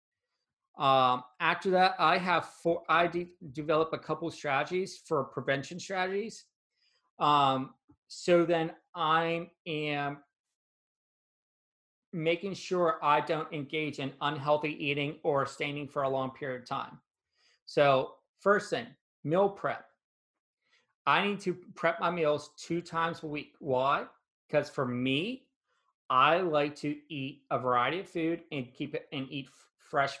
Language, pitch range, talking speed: English, 140-175 Hz, 135 wpm